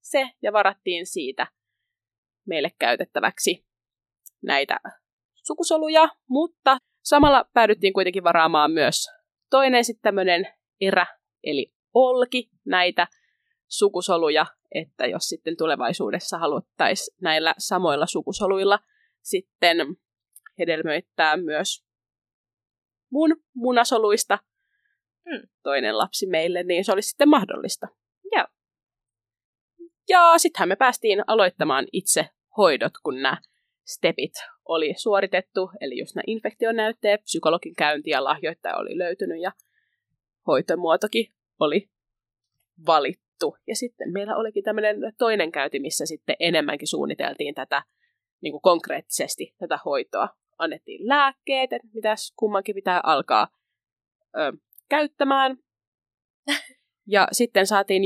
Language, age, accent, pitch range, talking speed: Finnish, 20-39, native, 180-290 Hz, 100 wpm